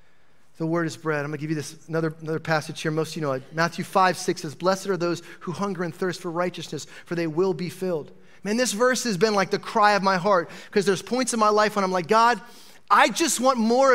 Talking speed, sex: 260 wpm, male